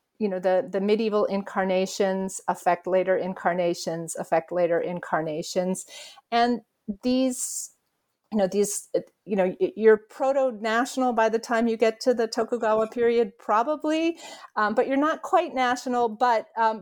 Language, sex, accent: English, female, American